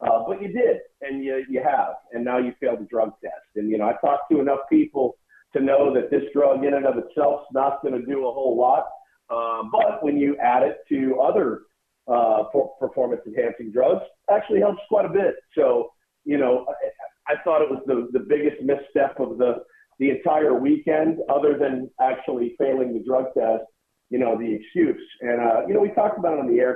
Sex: male